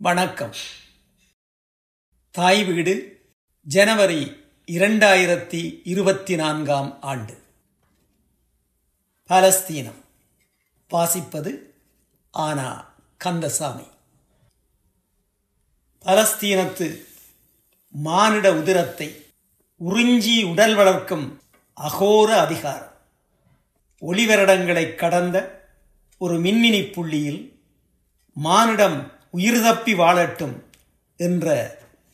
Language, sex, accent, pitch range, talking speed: Tamil, male, native, 145-205 Hz, 50 wpm